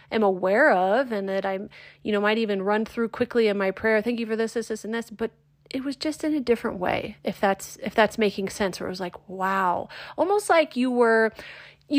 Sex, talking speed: female, 240 wpm